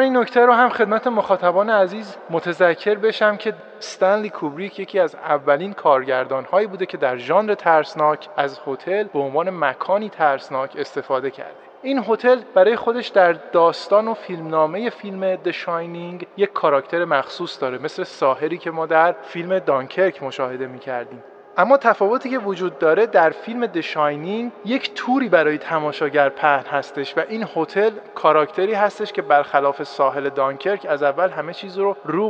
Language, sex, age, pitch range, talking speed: Persian, male, 30-49, 150-210 Hz, 155 wpm